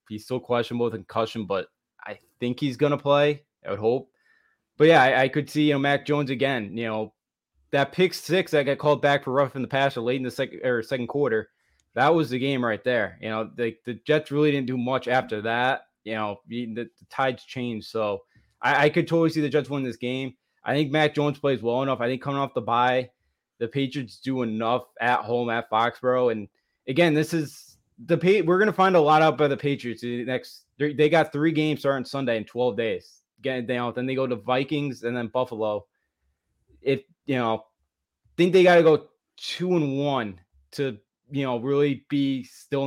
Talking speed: 220 wpm